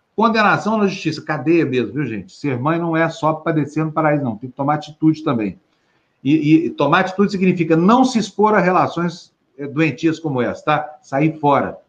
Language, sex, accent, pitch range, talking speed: Portuguese, male, Brazilian, 135-165 Hz, 190 wpm